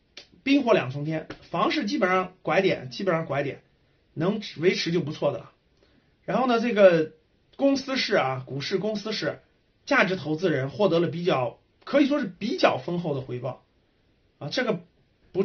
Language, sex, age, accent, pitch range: Chinese, male, 30-49, native, 155-225 Hz